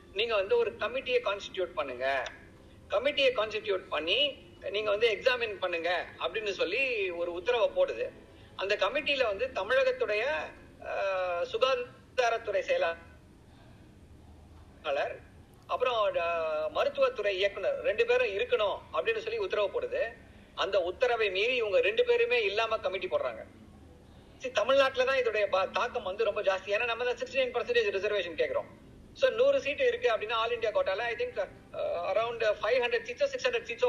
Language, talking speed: Tamil, 50 wpm